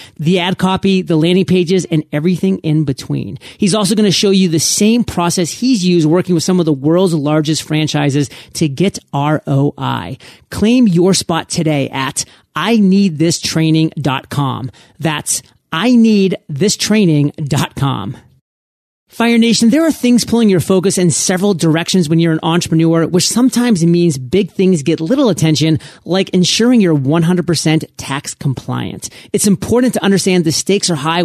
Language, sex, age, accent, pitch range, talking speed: English, male, 30-49, American, 155-195 Hz, 150 wpm